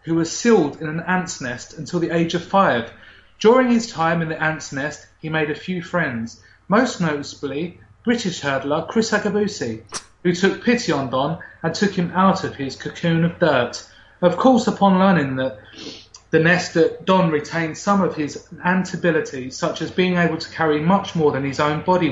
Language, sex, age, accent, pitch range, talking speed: English, male, 30-49, British, 145-190 Hz, 195 wpm